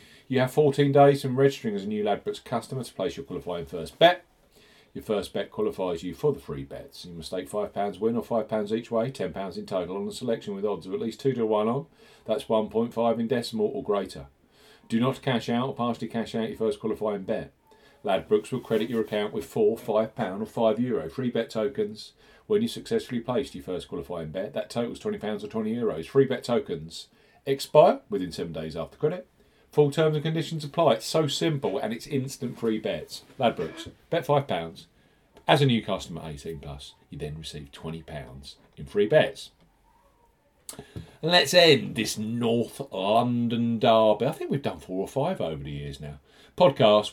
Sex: male